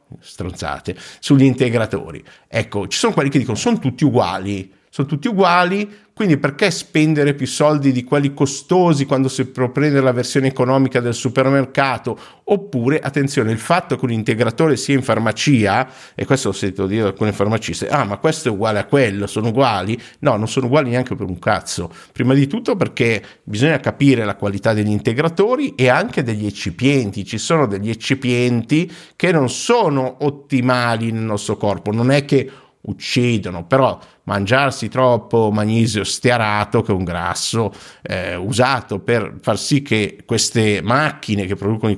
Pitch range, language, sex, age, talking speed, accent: 105-140 Hz, Italian, male, 50-69, 165 wpm, native